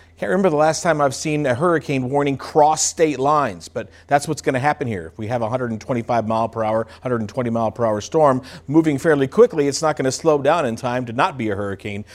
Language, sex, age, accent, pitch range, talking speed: English, male, 50-69, American, 120-165 Hz, 240 wpm